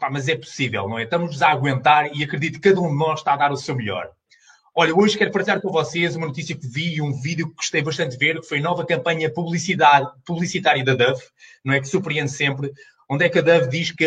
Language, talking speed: Portuguese, 250 wpm